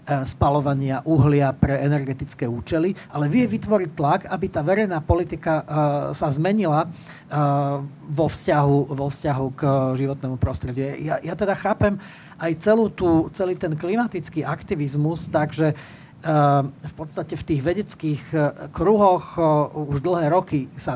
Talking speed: 125 wpm